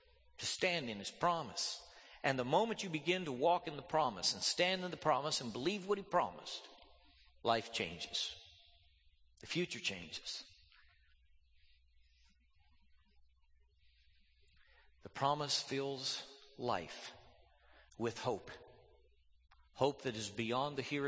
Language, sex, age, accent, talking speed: English, male, 50-69, American, 120 wpm